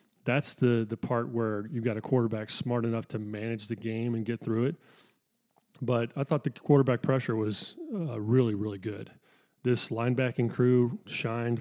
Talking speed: 175 wpm